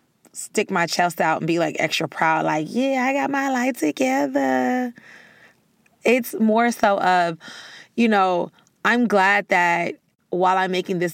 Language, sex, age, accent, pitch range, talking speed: English, female, 30-49, American, 175-225 Hz, 155 wpm